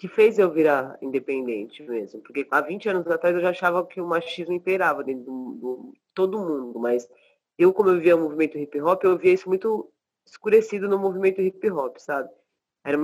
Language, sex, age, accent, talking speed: Portuguese, female, 20-39, Brazilian, 200 wpm